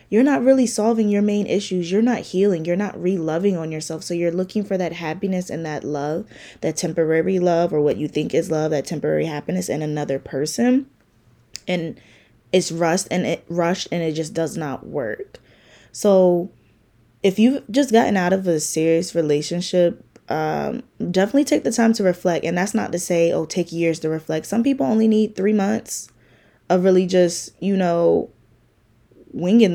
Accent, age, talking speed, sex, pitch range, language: American, 20-39, 180 wpm, female, 155-195 Hz, English